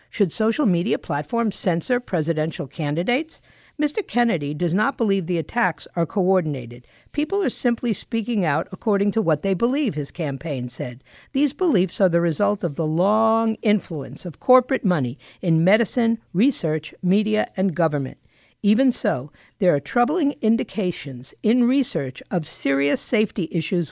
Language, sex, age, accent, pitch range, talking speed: English, female, 50-69, American, 160-230 Hz, 150 wpm